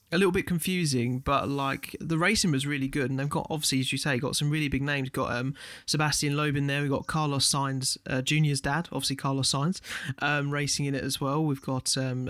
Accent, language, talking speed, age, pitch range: British, English, 230 wpm, 30-49, 130-150 Hz